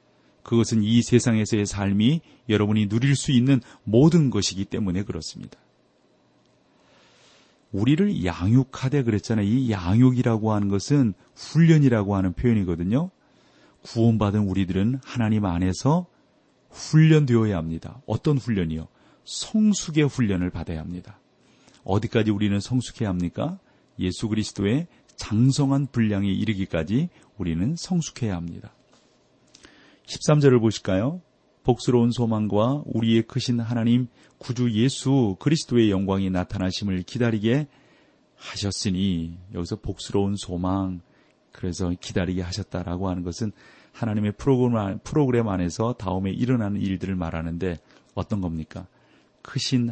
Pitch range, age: 95-125 Hz, 40-59